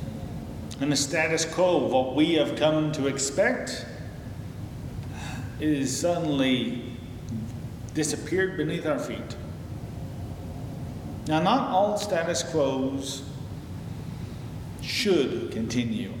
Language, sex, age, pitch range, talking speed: English, male, 40-59, 110-140 Hz, 90 wpm